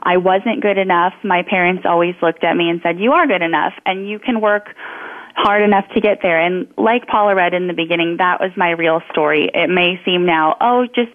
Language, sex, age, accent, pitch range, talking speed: English, female, 20-39, American, 165-205 Hz, 230 wpm